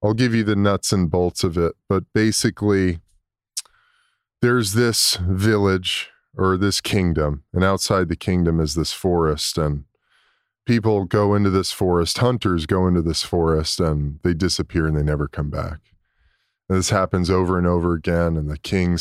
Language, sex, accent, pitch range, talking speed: English, male, American, 85-105 Hz, 165 wpm